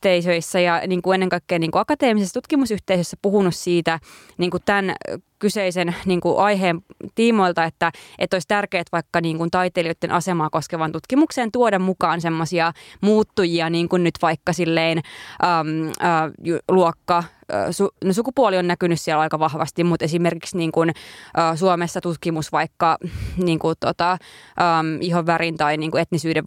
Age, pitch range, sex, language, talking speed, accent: 20-39, 170-200 Hz, female, Finnish, 160 wpm, native